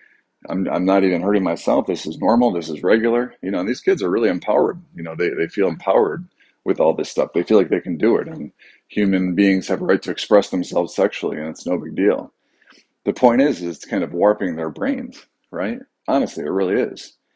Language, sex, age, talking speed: English, male, 40-59, 230 wpm